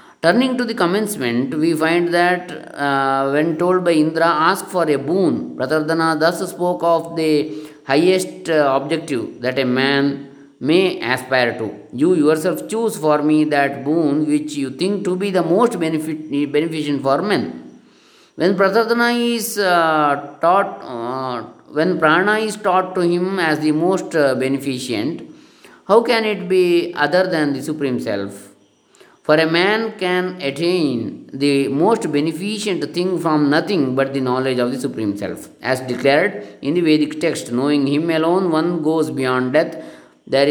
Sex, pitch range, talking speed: male, 135-175 Hz, 155 wpm